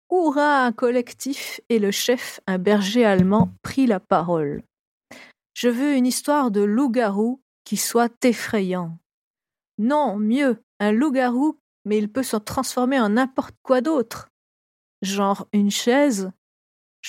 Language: French